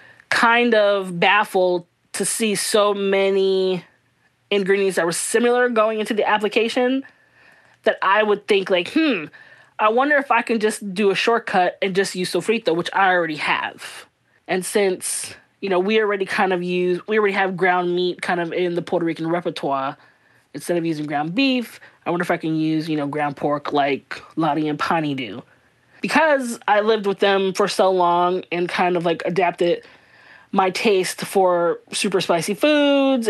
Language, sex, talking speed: English, female, 180 wpm